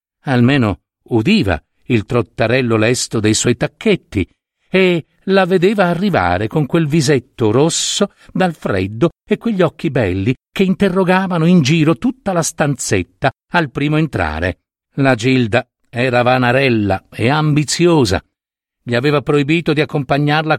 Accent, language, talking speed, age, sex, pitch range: native, Italian, 125 wpm, 50-69, male, 115-170 Hz